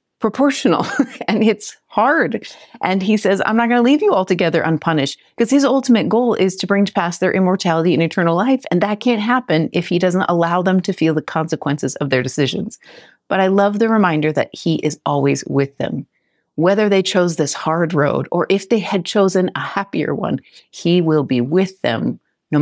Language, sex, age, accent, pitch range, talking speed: English, female, 30-49, American, 155-195 Hz, 200 wpm